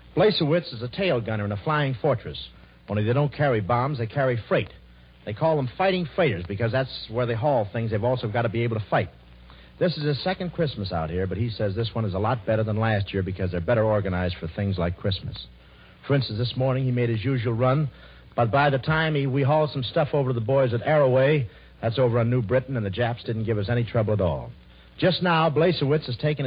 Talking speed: 245 wpm